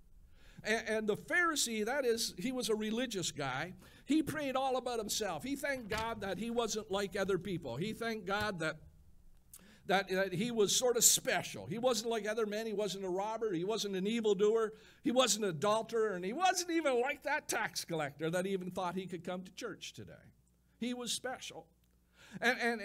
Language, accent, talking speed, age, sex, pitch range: English, American, 195 wpm, 60-79, male, 185-245 Hz